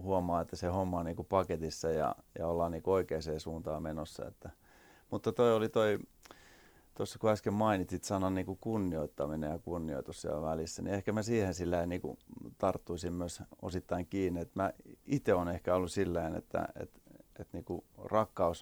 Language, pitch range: Finnish, 85-100 Hz